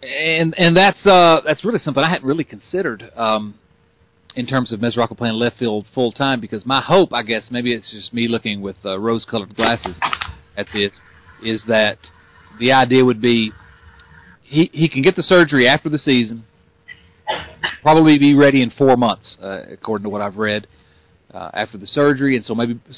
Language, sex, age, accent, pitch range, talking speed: English, male, 40-59, American, 105-135 Hz, 185 wpm